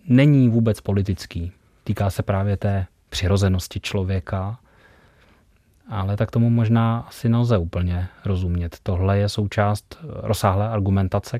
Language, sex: Czech, male